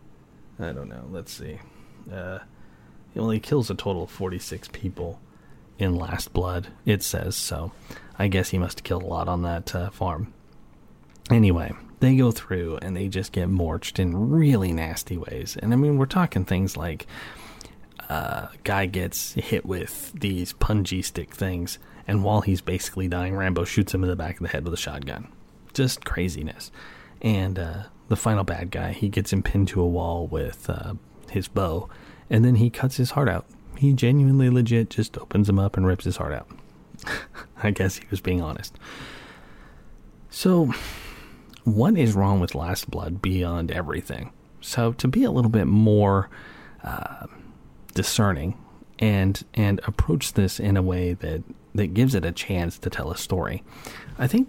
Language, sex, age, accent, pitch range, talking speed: English, male, 30-49, American, 90-110 Hz, 175 wpm